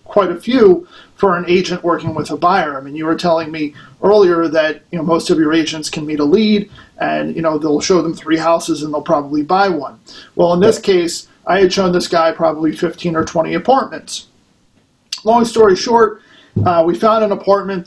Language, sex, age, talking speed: English, male, 40-59, 210 wpm